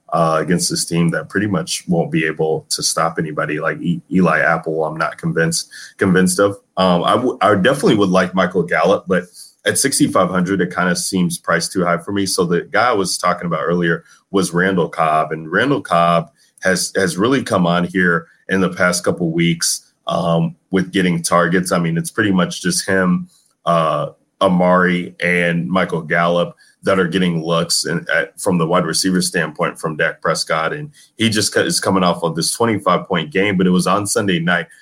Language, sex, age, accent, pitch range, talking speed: English, male, 30-49, American, 85-95 Hz, 195 wpm